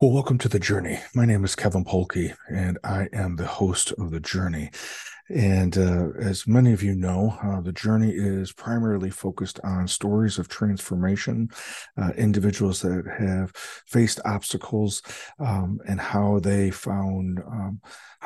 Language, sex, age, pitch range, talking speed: English, male, 40-59, 95-110 Hz, 155 wpm